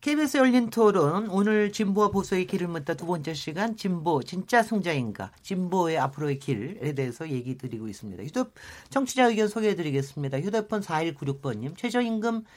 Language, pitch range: Korean, 140-200 Hz